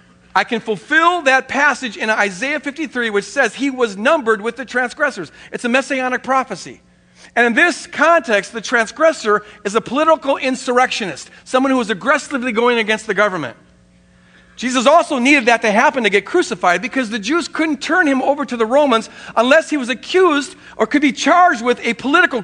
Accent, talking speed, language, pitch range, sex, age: American, 180 wpm, English, 185-265 Hz, male, 50-69